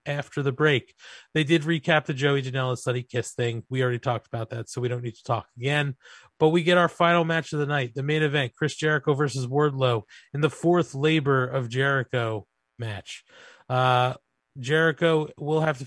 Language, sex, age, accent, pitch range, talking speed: English, male, 30-49, American, 130-155 Hz, 195 wpm